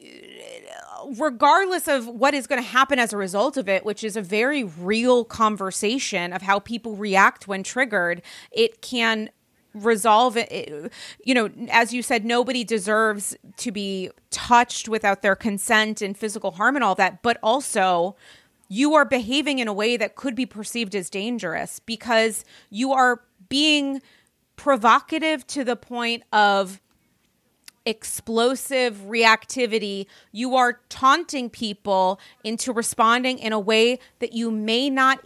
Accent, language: American, English